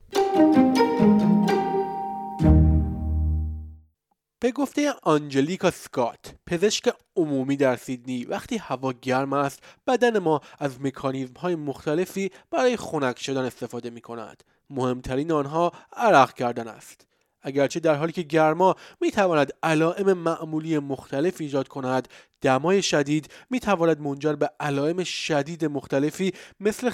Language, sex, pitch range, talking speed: Persian, male, 130-185 Hz, 115 wpm